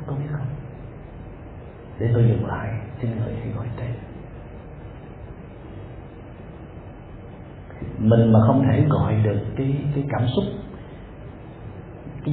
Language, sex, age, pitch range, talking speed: Vietnamese, male, 50-69, 110-130 Hz, 110 wpm